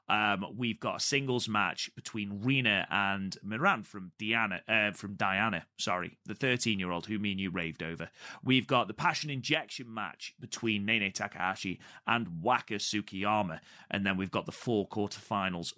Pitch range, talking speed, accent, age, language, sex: 95-120 Hz, 165 wpm, British, 30-49, English, male